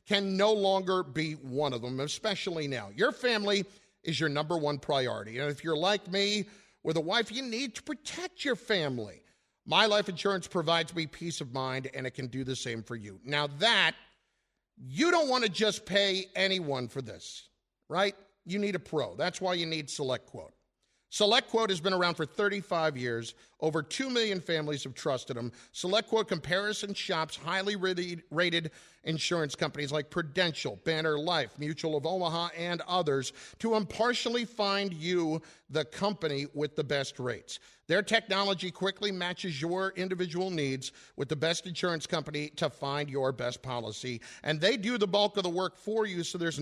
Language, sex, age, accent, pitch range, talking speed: English, male, 50-69, American, 150-200 Hz, 175 wpm